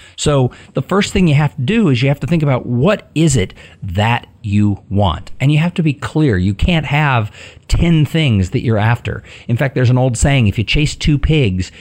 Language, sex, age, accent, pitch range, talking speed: English, male, 50-69, American, 100-140 Hz, 230 wpm